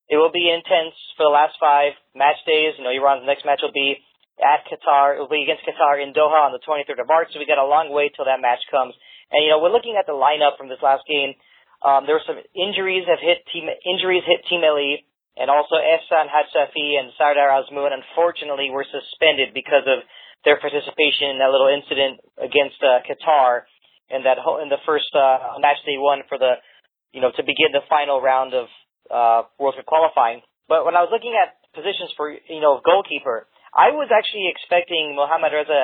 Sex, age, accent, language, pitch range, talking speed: male, 30-49, American, English, 140-160 Hz, 215 wpm